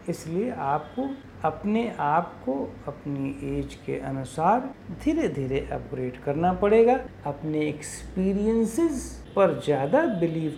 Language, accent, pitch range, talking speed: Hindi, native, 140-200 Hz, 110 wpm